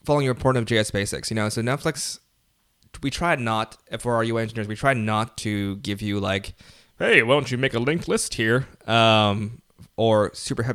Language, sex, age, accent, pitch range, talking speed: English, male, 20-39, American, 105-125 Hz, 200 wpm